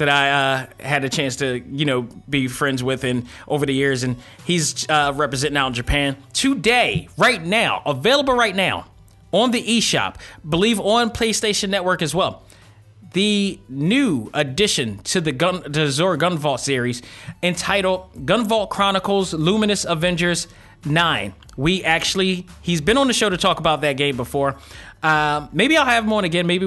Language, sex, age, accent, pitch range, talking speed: English, male, 30-49, American, 140-175 Hz, 175 wpm